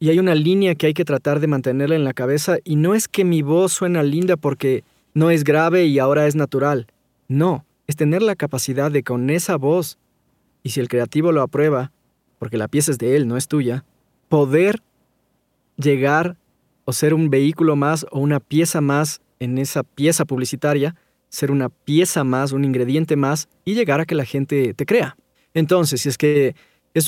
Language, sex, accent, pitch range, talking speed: Spanish, male, Mexican, 135-160 Hz, 195 wpm